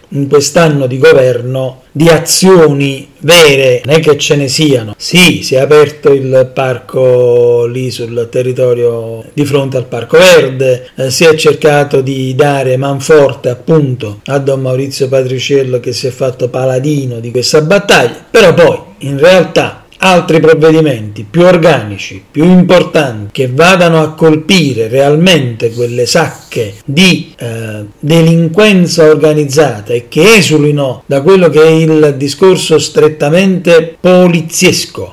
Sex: male